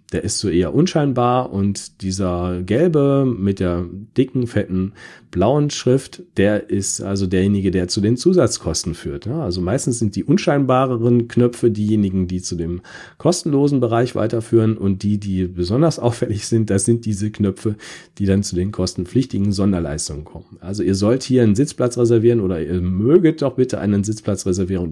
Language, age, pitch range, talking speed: German, 40-59, 95-120 Hz, 160 wpm